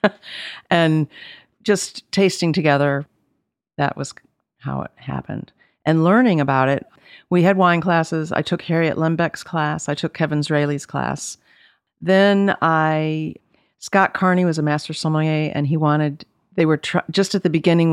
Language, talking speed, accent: English, 150 wpm, American